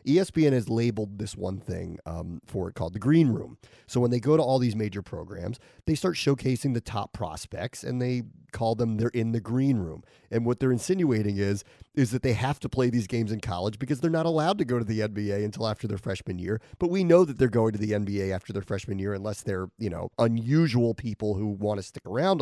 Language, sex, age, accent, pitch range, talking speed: English, male, 30-49, American, 100-130 Hz, 240 wpm